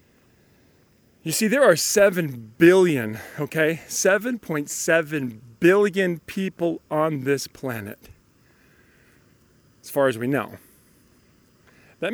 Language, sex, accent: English, male, American